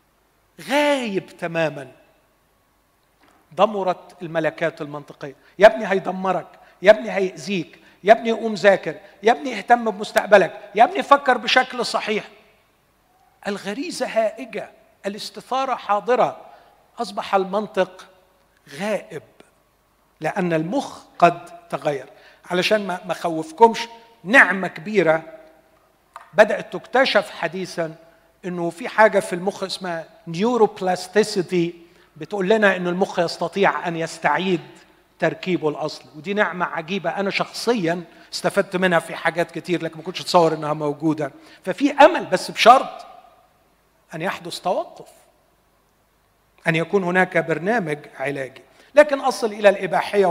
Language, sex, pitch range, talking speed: Arabic, male, 165-215 Hz, 110 wpm